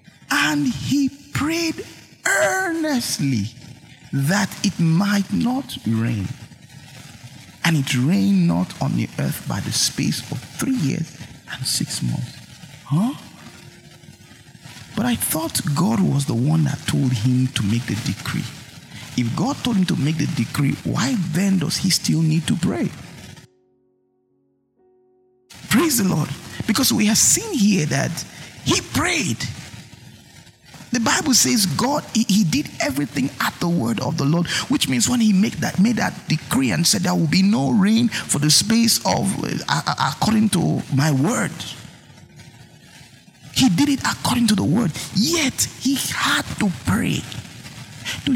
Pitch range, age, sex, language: 140-230 Hz, 50-69, male, English